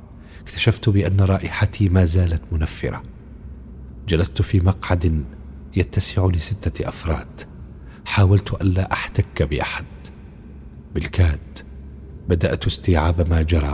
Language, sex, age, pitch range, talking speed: Arabic, male, 40-59, 75-95 Hz, 90 wpm